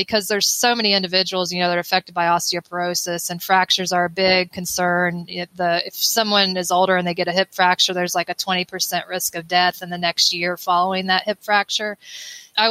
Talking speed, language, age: 215 wpm, English, 20-39